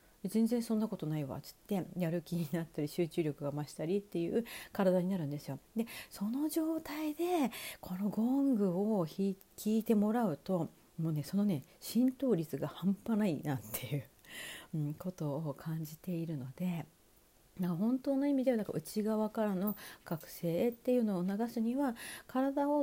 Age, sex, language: 40-59, female, Japanese